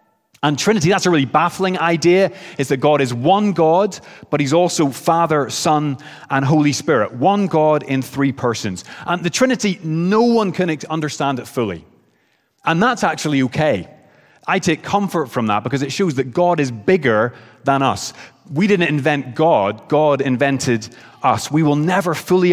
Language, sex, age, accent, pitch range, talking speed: English, male, 30-49, British, 120-155 Hz, 170 wpm